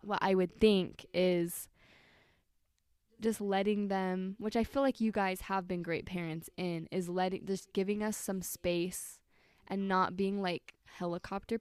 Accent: American